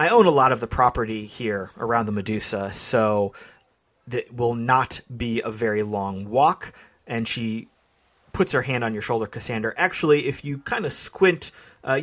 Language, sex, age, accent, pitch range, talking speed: English, male, 30-49, American, 110-140 Hz, 180 wpm